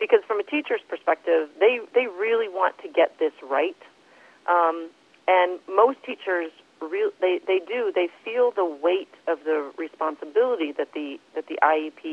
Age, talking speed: 40-59, 165 wpm